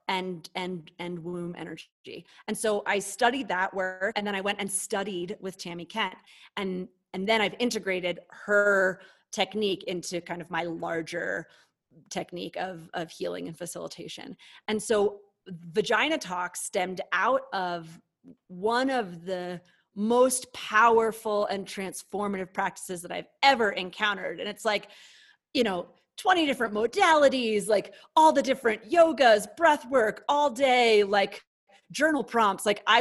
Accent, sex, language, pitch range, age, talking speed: American, female, English, 180-220 Hz, 30-49, 140 wpm